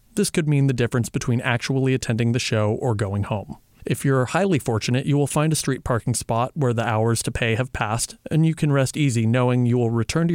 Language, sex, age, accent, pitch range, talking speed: English, male, 30-49, American, 115-140 Hz, 240 wpm